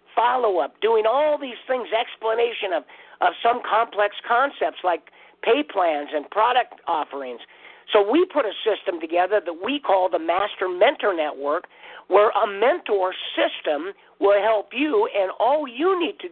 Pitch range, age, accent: 180-275 Hz, 50-69, American